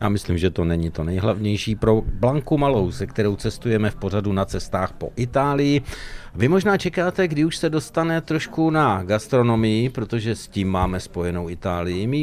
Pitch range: 95-135 Hz